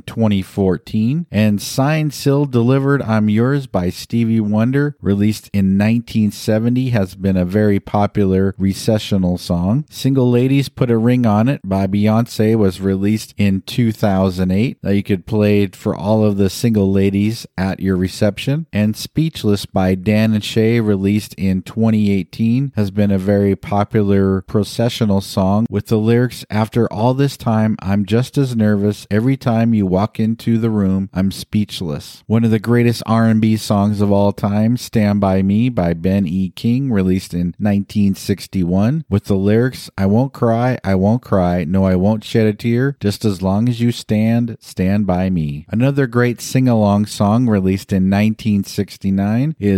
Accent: American